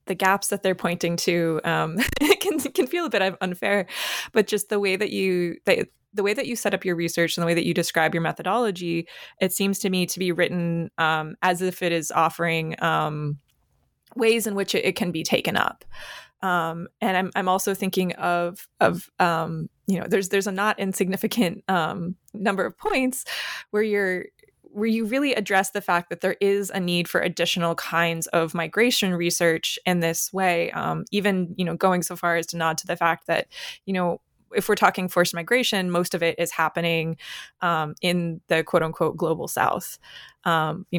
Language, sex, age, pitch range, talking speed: English, female, 20-39, 170-200 Hz, 200 wpm